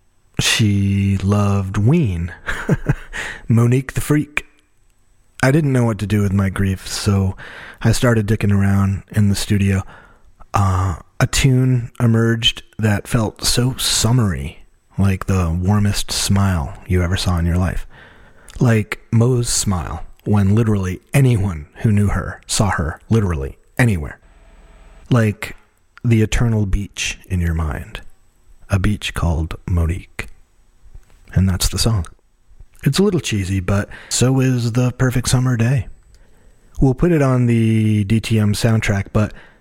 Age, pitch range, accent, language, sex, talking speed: 30-49, 95-115 Hz, American, English, male, 135 wpm